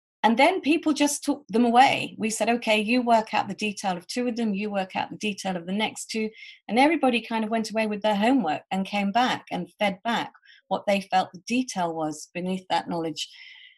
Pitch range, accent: 165-225 Hz, British